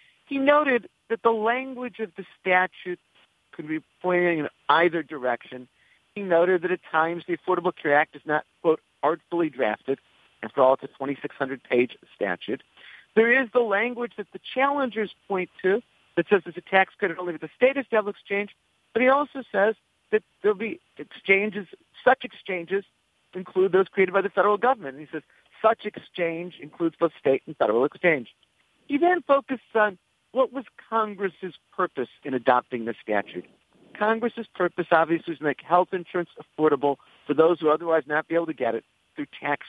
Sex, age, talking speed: male, 50-69, 175 wpm